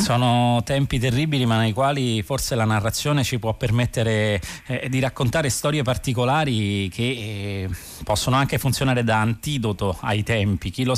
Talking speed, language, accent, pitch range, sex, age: 155 wpm, Italian, native, 100-130 Hz, male, 30-49